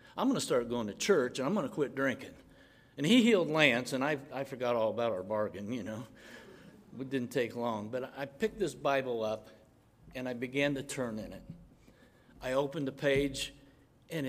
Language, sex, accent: English, male, American